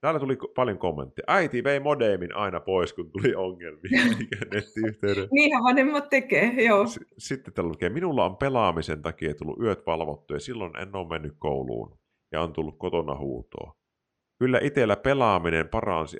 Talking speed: 145 wpm